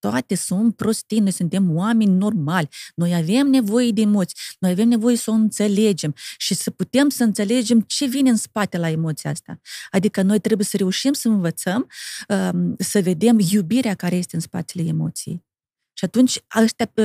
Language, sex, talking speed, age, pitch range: Romanian, female, 170 wpm, 30-49, 185-245 Hz